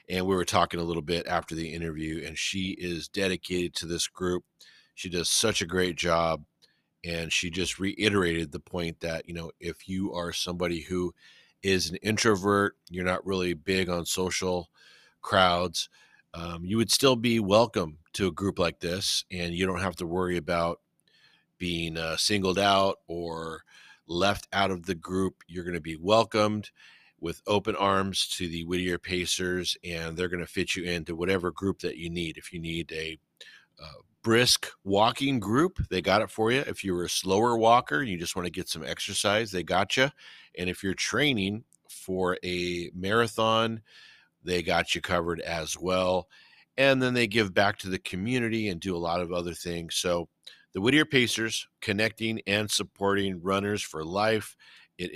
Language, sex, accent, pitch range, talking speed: English, male, American, 85-100 Hz, 180 wpm